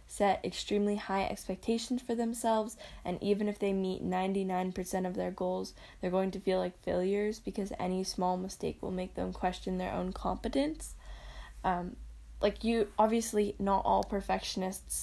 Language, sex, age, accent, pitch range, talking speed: English, female, 10-29, American, 185-210 Hz, 155 wpm